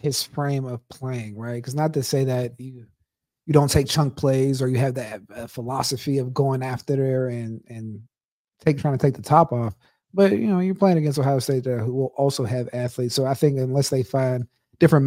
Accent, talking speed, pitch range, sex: American, 220 wpm, 120-140 Hz, male